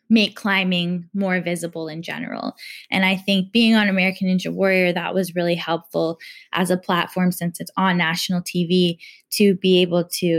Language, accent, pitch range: English, American, 180-215 Hz